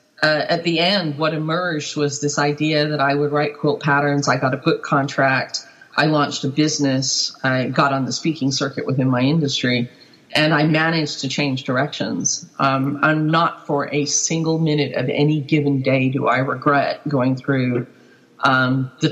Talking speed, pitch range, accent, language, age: 180 wpm, 135-150 Hz, American, English, 40-59